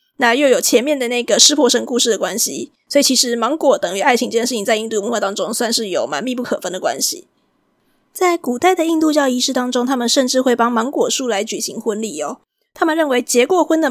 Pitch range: 225-275 Hz